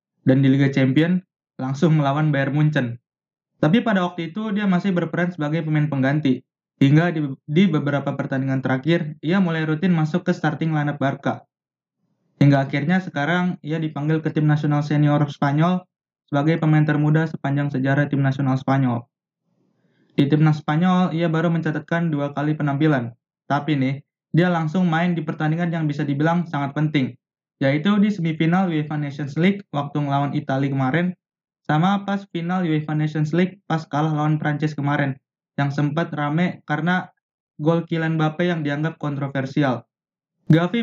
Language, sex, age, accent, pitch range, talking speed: Indonesian, male, 20-39, native, 145-170 Hz, 150 wpm